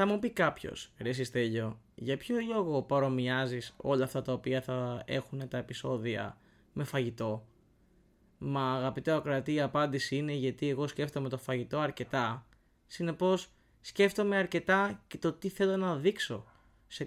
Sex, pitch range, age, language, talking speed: male, 125-170 Hz, 20-39, Greek, 150 wpm